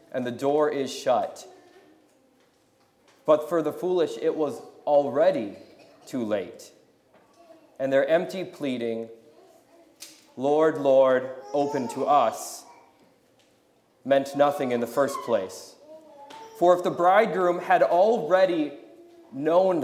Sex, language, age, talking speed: male, English, 30-49, 110 wpm